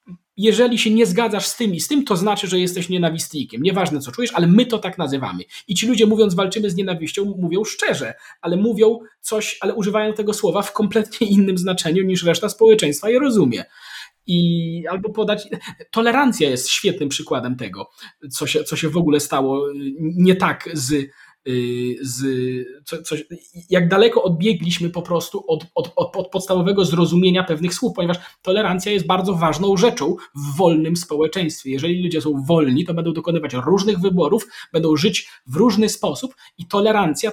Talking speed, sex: 165 wpm, male